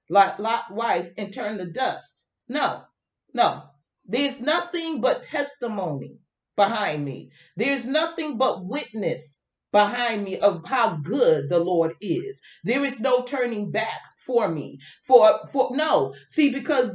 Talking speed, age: 135 wpm, 40-59